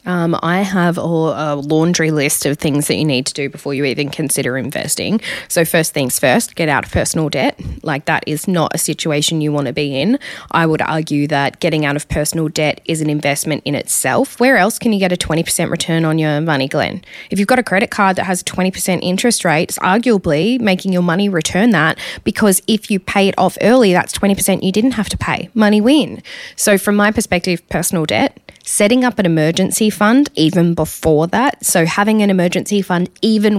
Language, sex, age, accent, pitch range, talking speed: English, female, 10-29, Australian, 160-205 Hz, 210 wpm